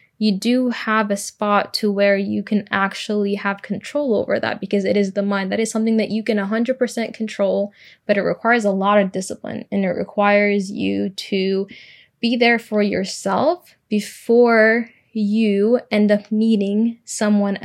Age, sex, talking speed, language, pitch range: 10-29, female, 165 wpm, English, 195-215 Hz